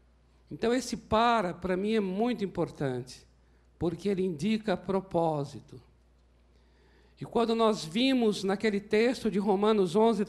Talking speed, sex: 120 wpm, male